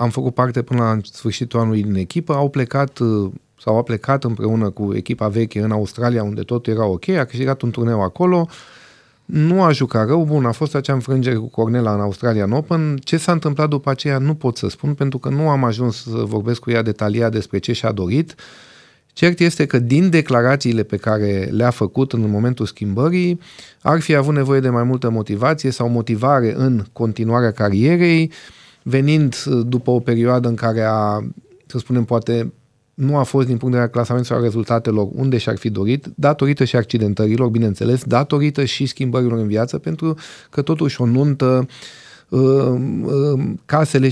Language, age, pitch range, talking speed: Romanian, 40-59, 115-145 Hz, 175 wpm